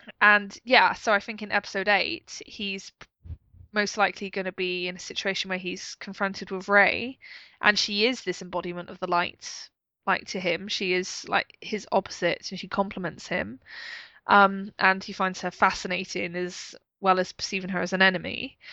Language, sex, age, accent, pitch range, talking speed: English, female, 20-39, British, 185-205 Hz, 180 wpm